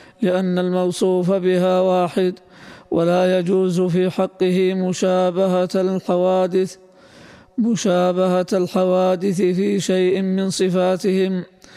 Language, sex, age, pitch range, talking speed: Arabic, male, 20-39, 185-190 Hz, 80 wpm